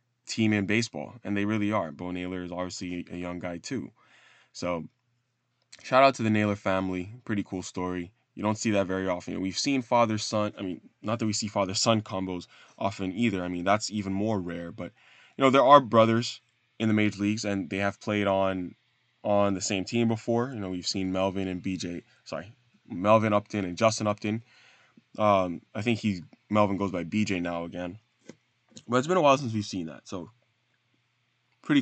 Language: English